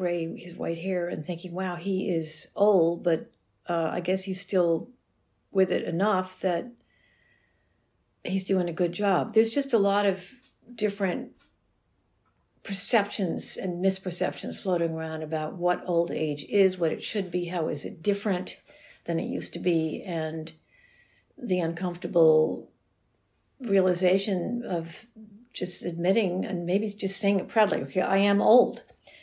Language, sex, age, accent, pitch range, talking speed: English, female, 60-79, American, 165-200 Hz, 145 wpm